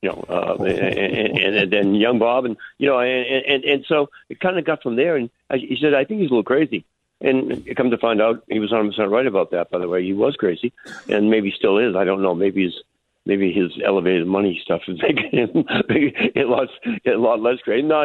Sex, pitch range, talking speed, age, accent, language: male, 95-120 Hz, 245 wpm, 60-79, American, English